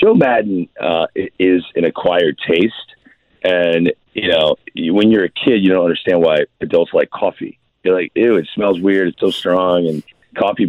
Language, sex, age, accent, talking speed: English, male, 40-59, American, 185 wpm